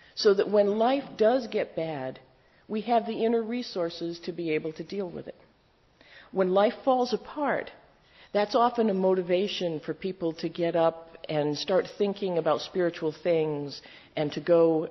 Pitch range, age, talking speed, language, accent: 155-215 Hz, 50-69, 165 wpm, English, American